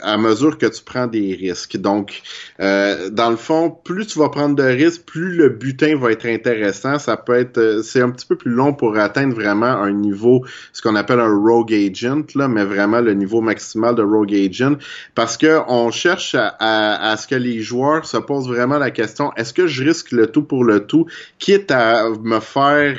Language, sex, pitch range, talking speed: French, male, 100-135 Hz, 215 wpm